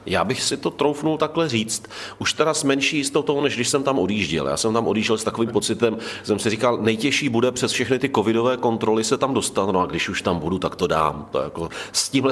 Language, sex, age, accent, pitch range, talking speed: Czech, male, 40-59, native, 100-115 Hz, 240 wpm